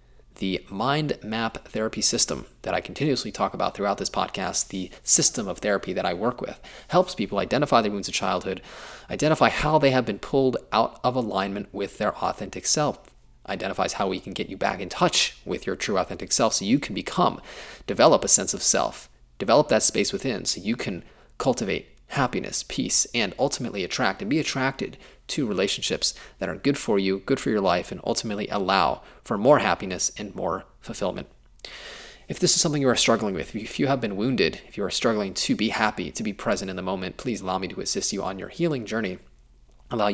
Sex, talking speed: male, 205 wpm